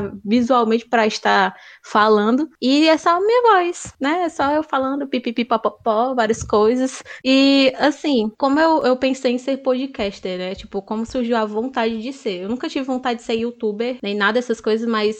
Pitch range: 230-280 Hz